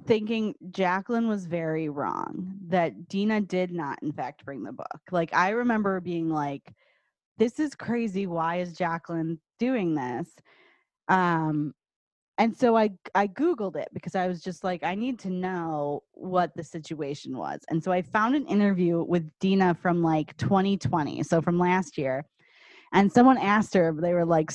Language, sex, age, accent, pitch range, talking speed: English, female, 20-39, American, 165-205 Hz, 170 wpm